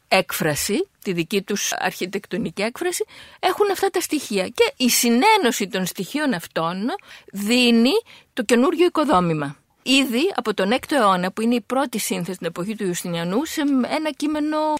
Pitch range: 195-310 Hz